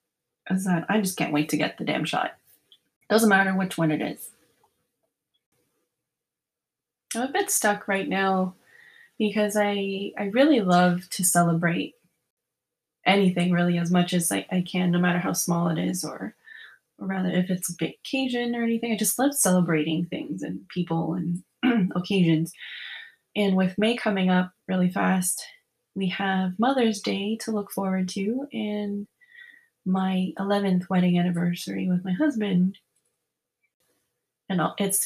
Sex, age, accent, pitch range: female, 20-39, American, 175-210 Hz